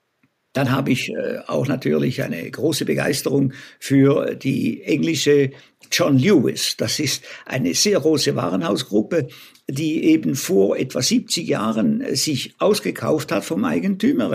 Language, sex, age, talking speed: German, male, 60-79, 125 wpm